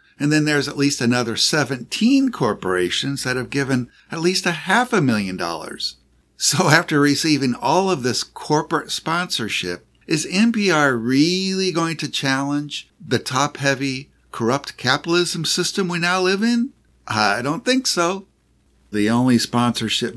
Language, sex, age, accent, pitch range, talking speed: English, male, 50-69, American, 120-180 Hz, 145 wpm